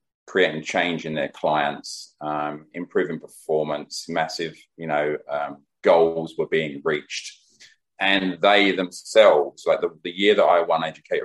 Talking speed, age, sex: 145 wpm, 30-49, male